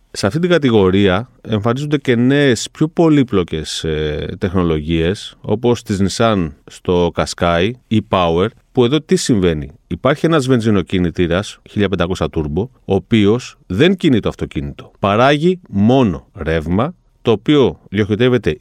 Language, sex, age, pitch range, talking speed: Greek, male, 30-49, 95-135 Hz, 125 wpm